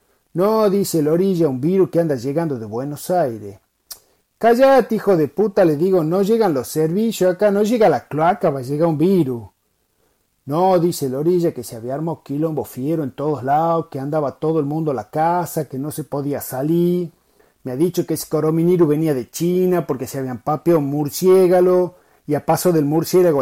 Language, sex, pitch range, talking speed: Spanish, male, 145-180 Hz, 195 wpm